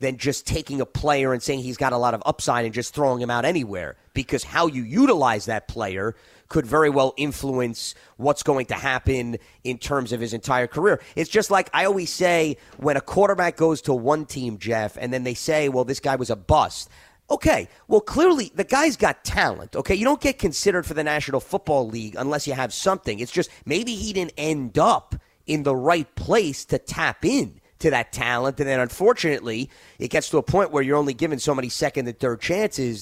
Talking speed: 215 wpm